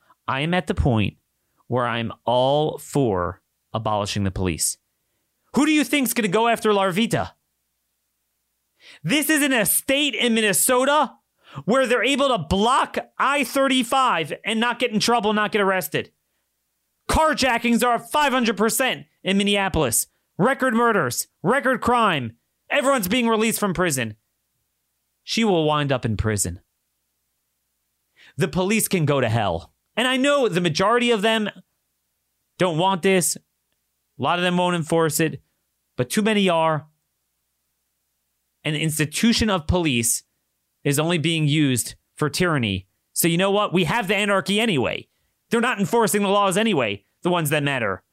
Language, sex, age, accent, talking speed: English, male, 30-49, American, 145 wpm